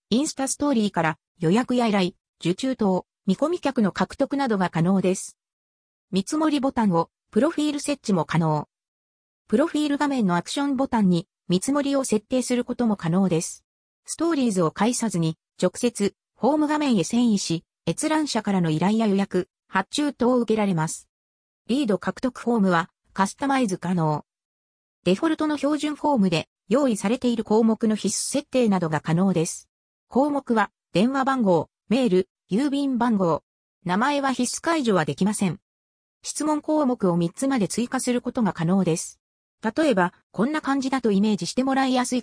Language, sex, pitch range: Japanese, female, 180-270 Hz